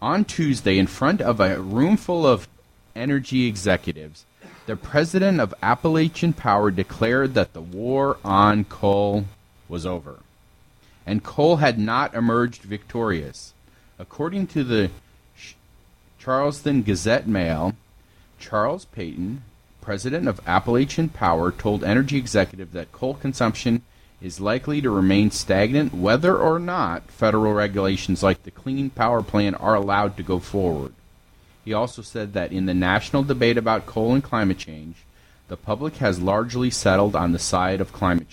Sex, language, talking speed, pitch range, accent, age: male, English, 140 wpm, 90-130 Hz, American, 40-59